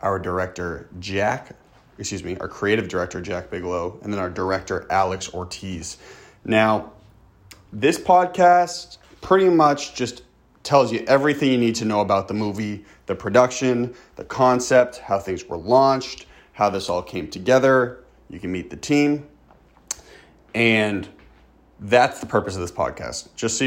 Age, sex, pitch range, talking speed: 30-49, male, 95-120 Hz, 150 wpm